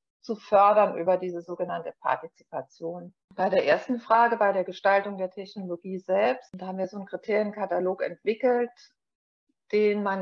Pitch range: 190-225 Hz